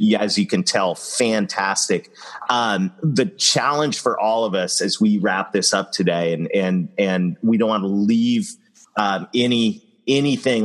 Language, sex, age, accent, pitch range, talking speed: English, male, 40-59, American, 95-135 Hz, 170 wpm